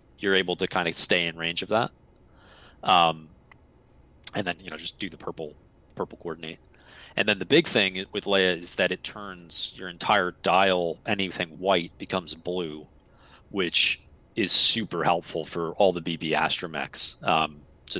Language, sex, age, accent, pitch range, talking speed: English, male, 30-49, American, 80-95 Hz, 165 wpm